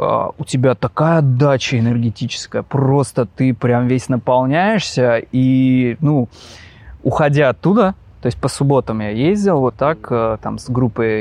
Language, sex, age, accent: Russian, male, 20-39, native